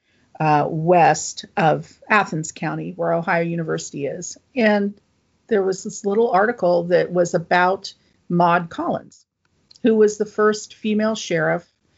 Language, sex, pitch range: English, female, 175-220 Hz